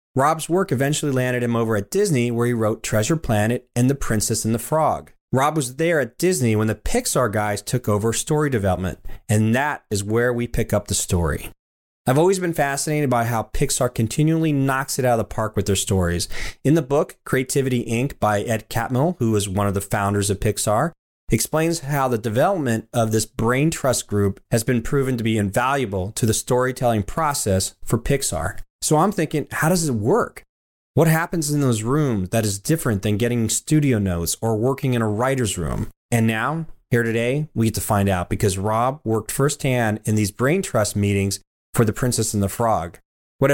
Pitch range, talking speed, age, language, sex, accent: 110-140 Hz, 200 wpm, 30-49, English, male, American